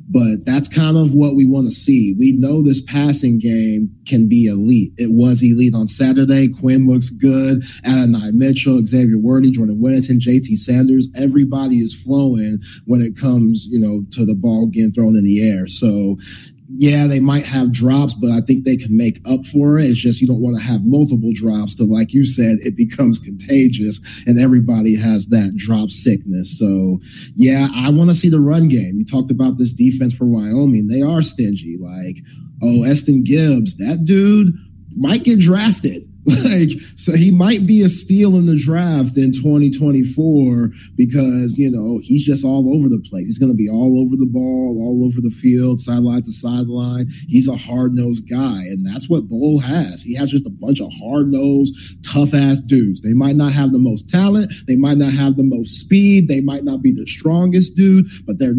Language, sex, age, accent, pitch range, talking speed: English, male, 30-49, American, 115-140 Hz, 195 wpm